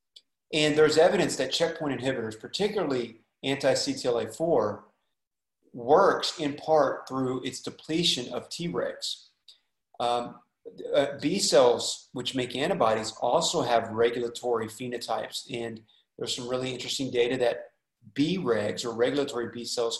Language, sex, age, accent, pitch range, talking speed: English, male, 30-49, American, 115-140 Hz, 120 wpm